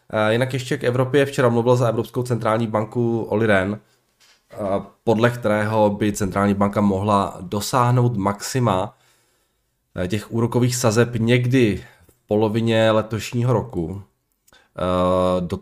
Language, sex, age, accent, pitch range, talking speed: Czech, male, 20-39, native, 95-110 Hz, 110 wpm